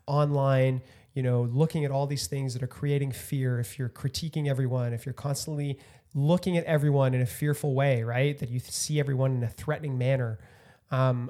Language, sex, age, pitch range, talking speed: English, male, 30-49, 120-145 Hz, 190 wpm